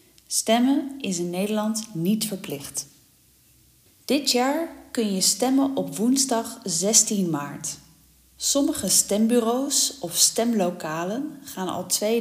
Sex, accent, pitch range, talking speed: female, Dutch, 170-230 Hz, 110 wpm